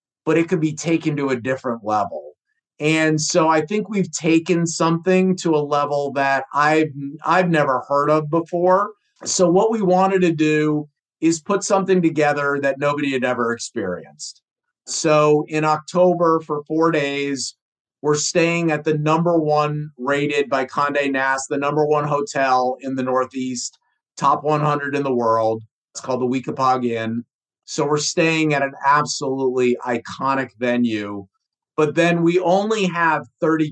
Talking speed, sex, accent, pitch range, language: 155 wpm, male, American, 135-160 Hz, English